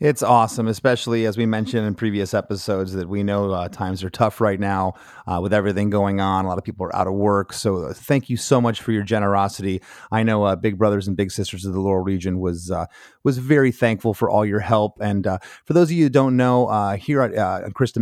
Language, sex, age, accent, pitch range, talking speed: English, male, 30-49, American, 100-120 Hz, 250 wpm